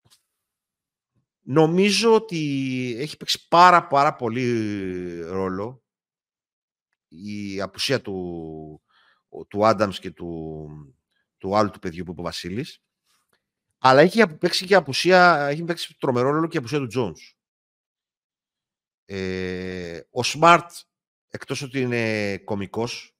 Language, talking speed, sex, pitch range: Greek, 115 wpm, male, 95-140 Hz